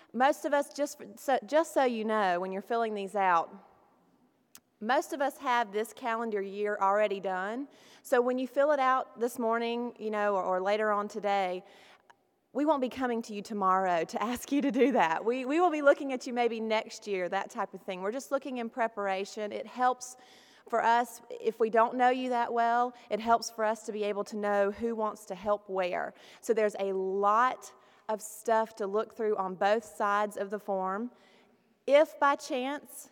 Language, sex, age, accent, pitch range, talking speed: English, female, 30-49, American, 205-250 Hz, 200 wpm